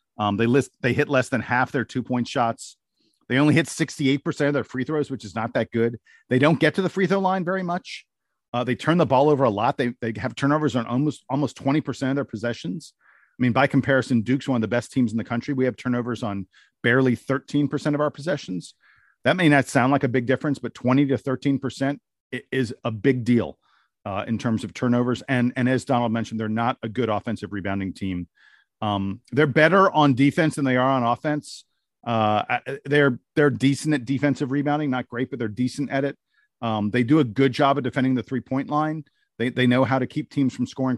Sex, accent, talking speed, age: male, American, 225 wpm, 40-59